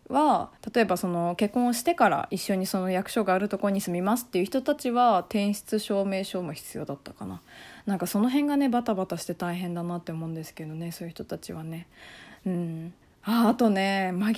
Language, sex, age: Japanese, female, 20-39